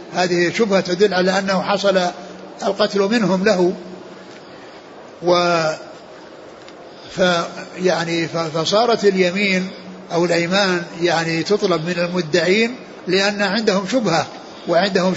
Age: 60-79